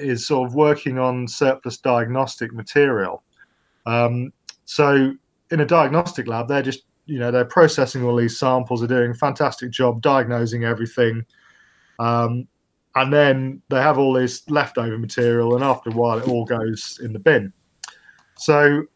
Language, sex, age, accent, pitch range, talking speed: English, male, 20-39, British, 120-140 Hz, 160 wpm